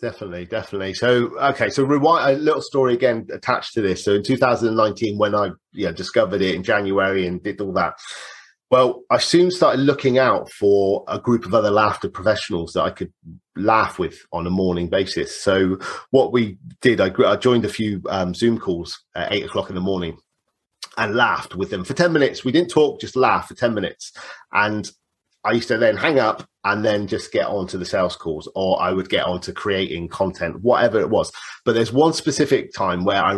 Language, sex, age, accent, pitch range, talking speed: English, male, 30-49, British, 95-130 Hz, 210 wpm